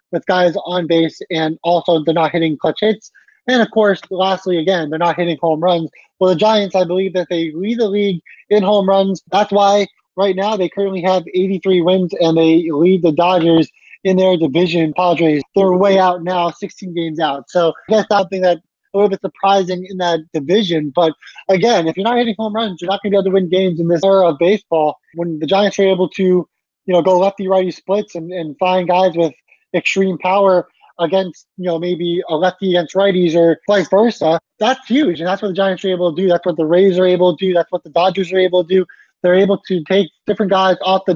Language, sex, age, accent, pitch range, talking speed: English, male, 20-39, American, 165-195 Hz, 225 wpm